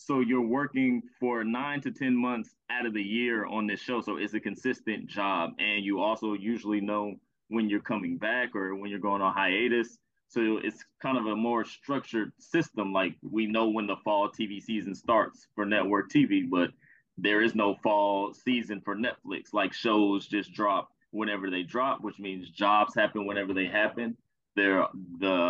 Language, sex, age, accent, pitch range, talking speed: English, male, 20-39, American, 100-115 Hz, 185 wpm